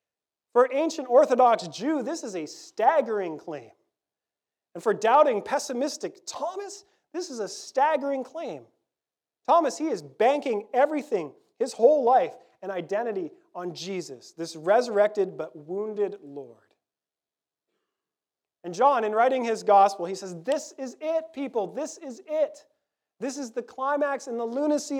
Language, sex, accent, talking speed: English, male, American, 140 wpm